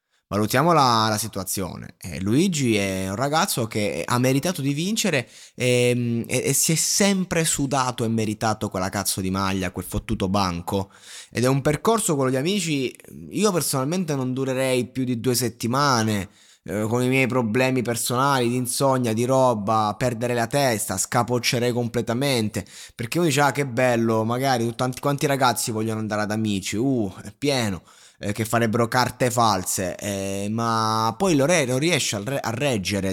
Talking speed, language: 165 wpm, Italian